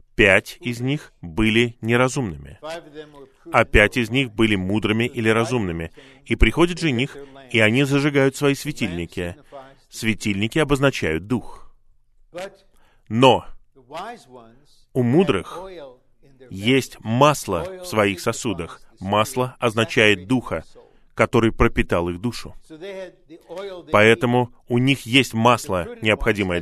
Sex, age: male, 20-39